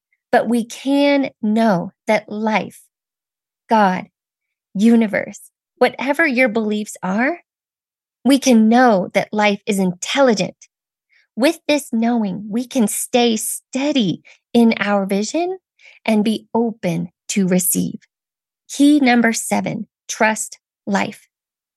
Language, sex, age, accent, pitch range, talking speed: English, female, 20-39, American, 205-265 Hz, 110 wpm